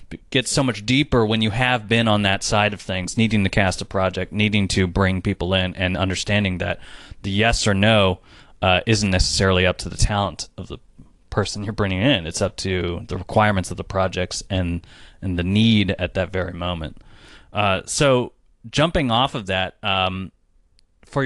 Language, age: English, 20-39